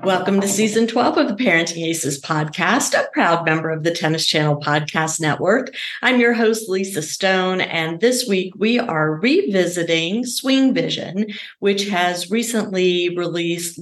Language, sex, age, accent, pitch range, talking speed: English, female, 50-69, American, 165-230 Hz, 150 wpm